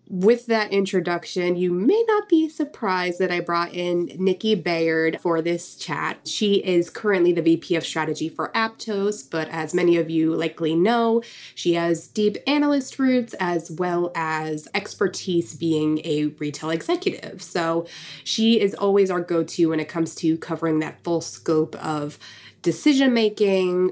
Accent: American